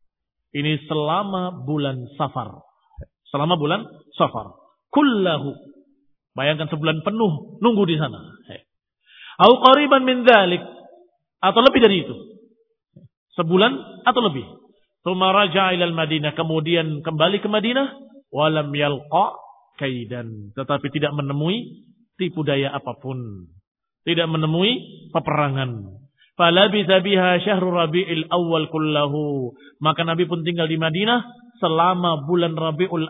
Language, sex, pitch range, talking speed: Indonesian, male, 150-200 Hz, 100 wpm